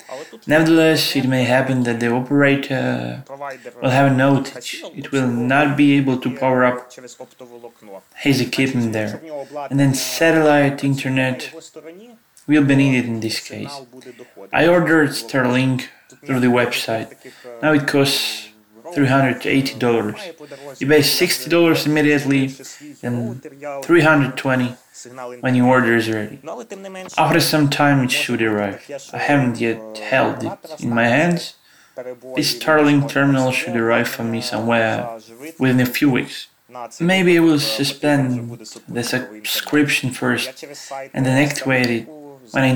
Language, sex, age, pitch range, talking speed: Ukrainian, male, 20-39, 120-145 Hz, 130 wpm